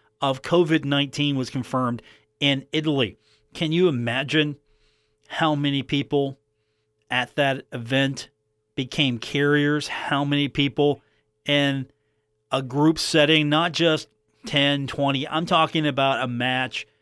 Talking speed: 115 wpm